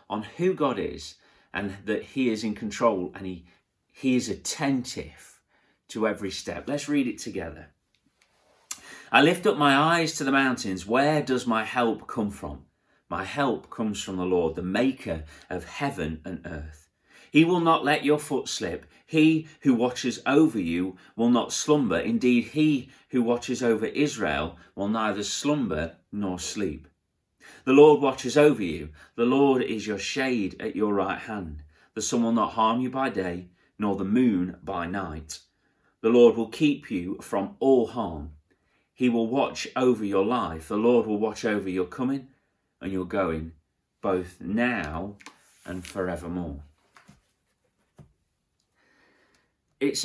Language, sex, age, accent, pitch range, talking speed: English, male, 40-59, British, 90-135 Hz, 155 wpm